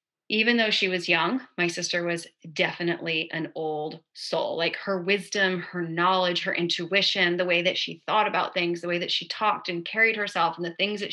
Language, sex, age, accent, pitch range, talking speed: English, female, 30-49, American, 170-200 Hz, 205 wpm